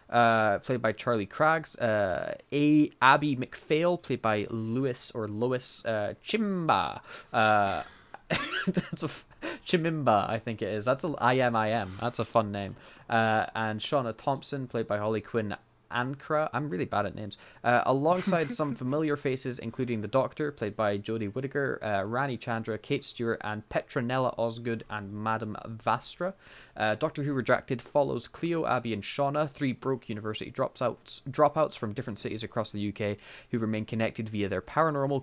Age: 10-29